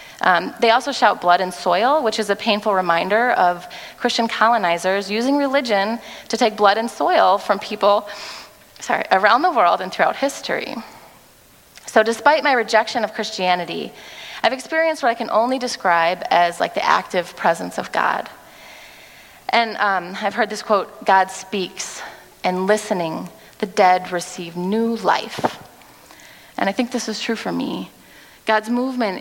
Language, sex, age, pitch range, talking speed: English, female, 30-49, 195-245 Hz, 155 wpm